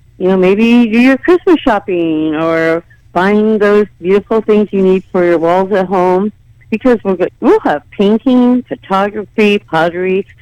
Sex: female